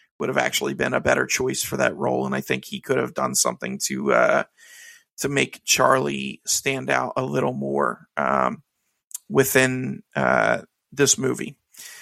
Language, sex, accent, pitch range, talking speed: English, male, American, 140-205 Hz, 165 wpm